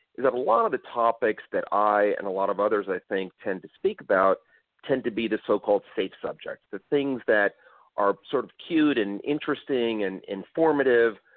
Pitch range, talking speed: 100-130 Hz, 205 wpm